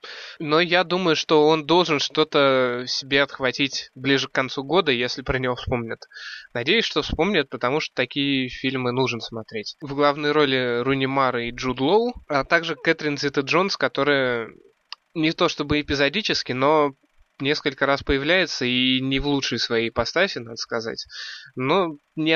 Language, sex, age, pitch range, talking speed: Russian, male, 20-39, 125-150 Hz, 155 wpm